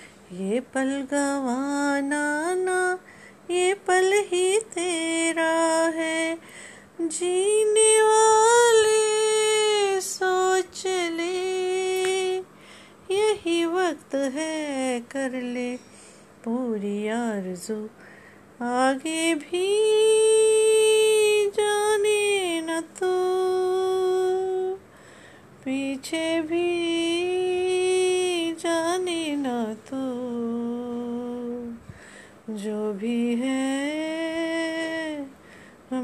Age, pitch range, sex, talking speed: 30-49, 240-370 Hz, female, 55 wpm